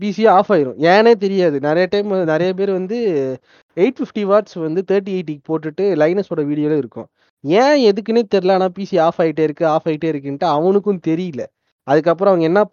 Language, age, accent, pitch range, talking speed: Tamil, 20-39, native, 155-195 Hz, 160 wpm